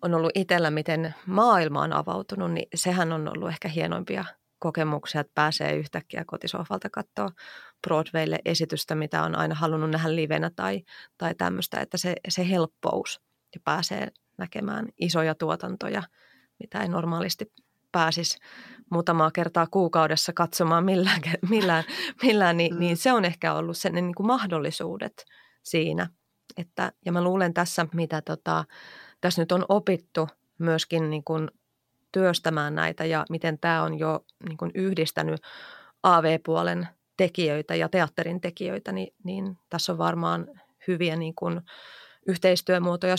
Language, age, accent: Finnish, 30-49, native